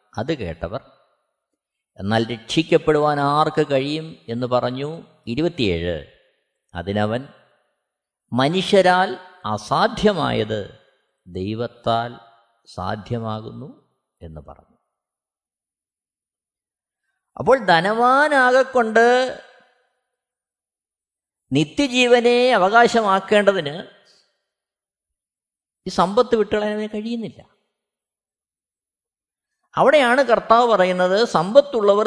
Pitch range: 155-240 Hz